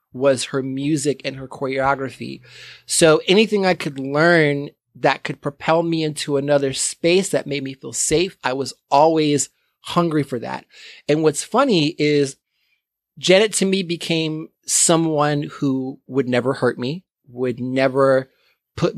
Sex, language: male, English